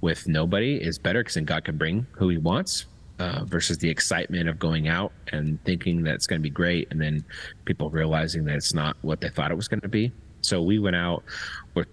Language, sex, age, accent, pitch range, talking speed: English, male, 30-49, American, 80-90 Hz, 235 wpm